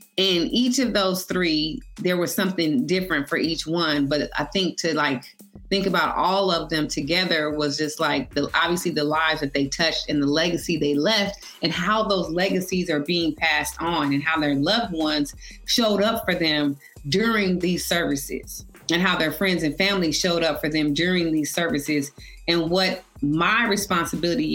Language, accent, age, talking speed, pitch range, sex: English, American, 30-49, 185 wpm, 150-185 Hz, female